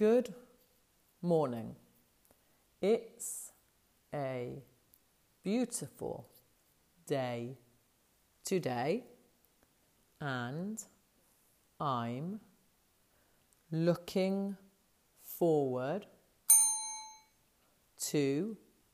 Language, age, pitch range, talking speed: English, 40-59, 130-195 Hz, 40 wpm